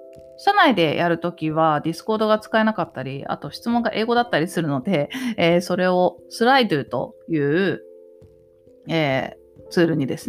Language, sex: Japanese, female